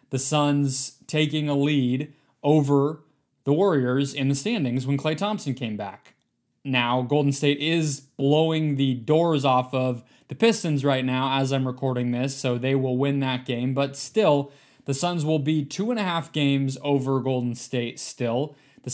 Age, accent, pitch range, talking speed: 20-39, American, 130-150 Hz, 175 wpm